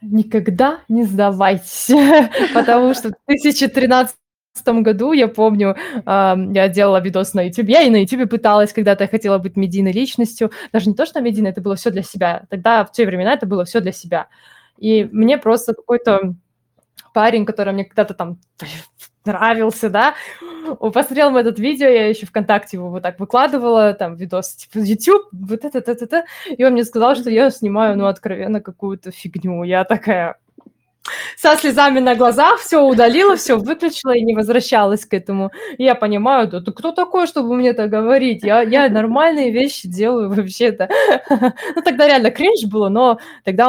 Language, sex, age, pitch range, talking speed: Russian, female, 20-39, 195-255 Hz, 170 wpm